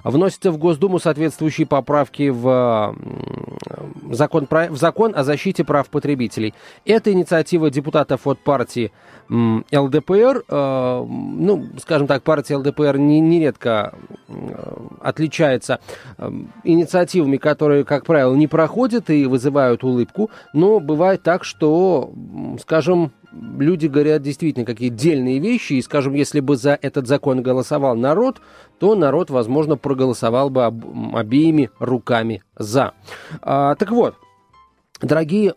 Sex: male